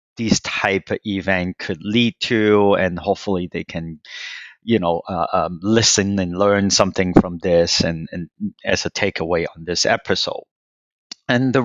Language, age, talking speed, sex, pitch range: English, 30-49, 160 wpm, male, 95-105 Hz